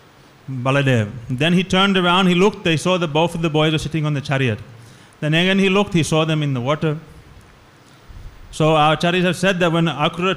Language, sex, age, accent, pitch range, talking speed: English, male, 30-49, Indian, 135-175 Hz, 215 wpm